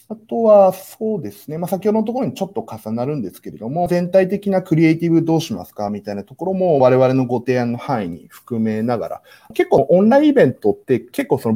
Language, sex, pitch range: Japanese, male, 115-195 Hz